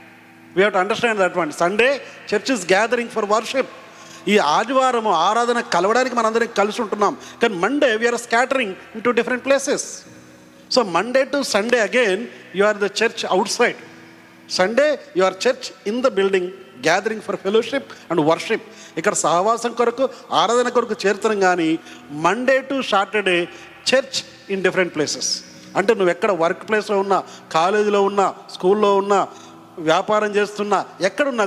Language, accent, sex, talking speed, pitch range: Telugu, native, male, 145 wpm, 175-235 Hz